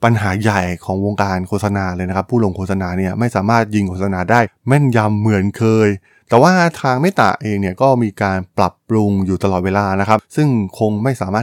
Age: 20-39